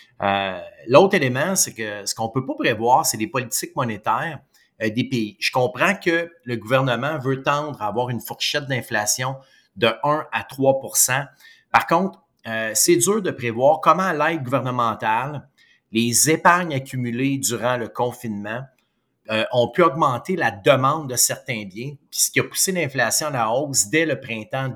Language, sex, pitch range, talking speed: French, male, 115-150 Hz, 170 wpm